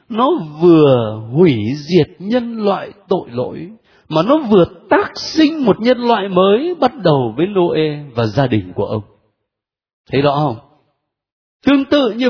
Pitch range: 135-225 Hz